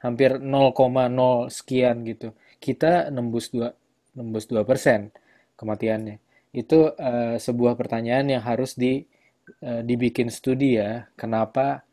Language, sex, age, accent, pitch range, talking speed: Indonesian, male, 20-39, native, 115-135 Hz, 115 wpm